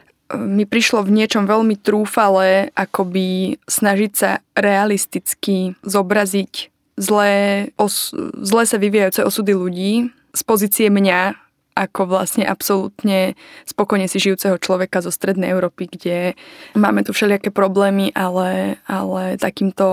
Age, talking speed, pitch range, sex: 20-39, 120 wpm, 190-210 Hz, female